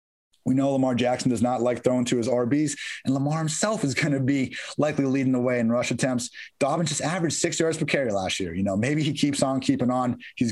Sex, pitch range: male, 120-155 Hz